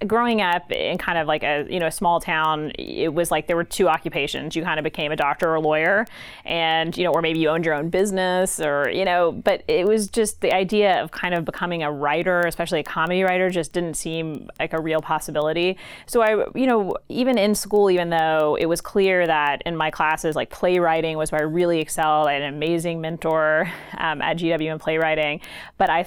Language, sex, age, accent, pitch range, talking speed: English, female, 30-49, American, 155-185 Hz, 230 wpm